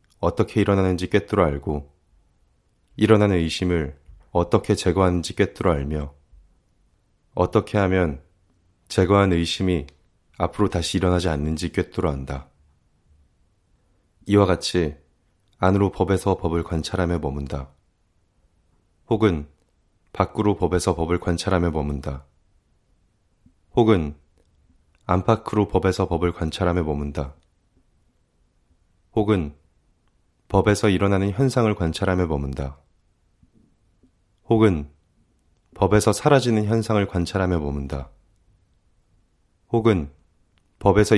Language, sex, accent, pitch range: Korean, male, native, 80-100 Hz